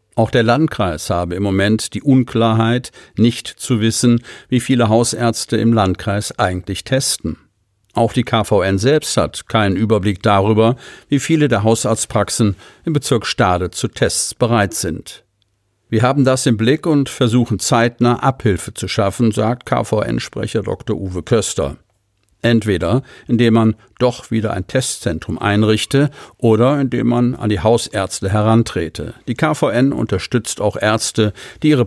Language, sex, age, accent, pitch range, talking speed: German, male, 50-69, German, 100-120 Hz, 140 wpm